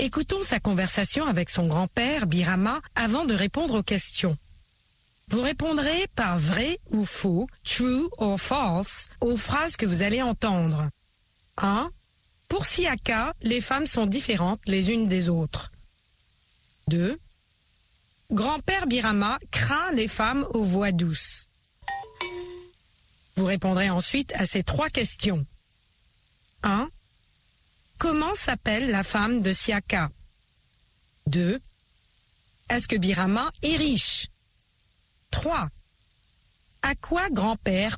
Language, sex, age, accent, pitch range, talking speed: French, female, 40-59, French, 165-250 Hz, 110 wpm